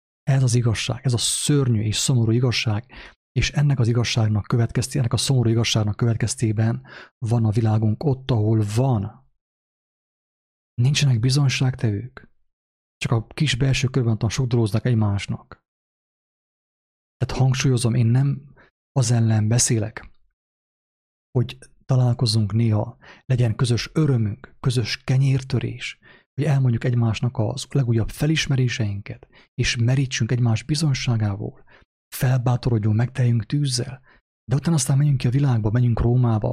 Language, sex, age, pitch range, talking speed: English, male, 30-49, 115-135 Hz, 115 wpm